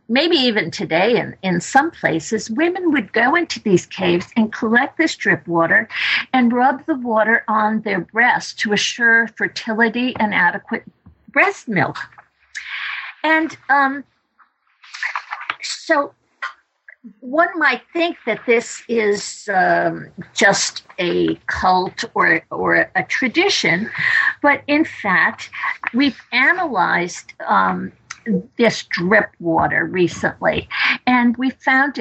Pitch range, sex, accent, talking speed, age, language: 205-265 Hz, female, American, 115 wpm, 50-69, English